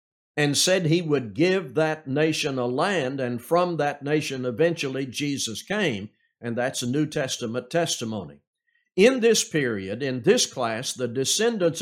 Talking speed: 150 wpm